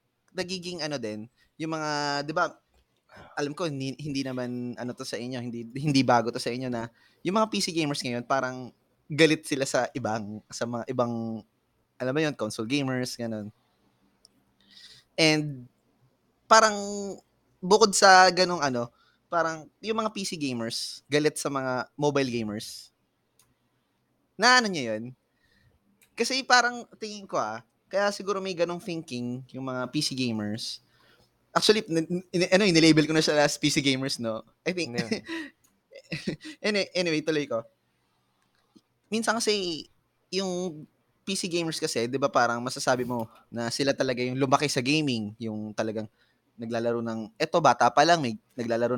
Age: 20-39